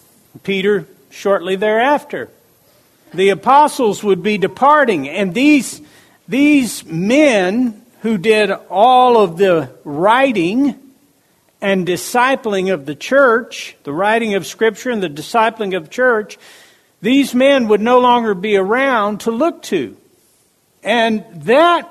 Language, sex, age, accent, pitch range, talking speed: English, male, 60-79, American, 195-255 Hz, 120 wpm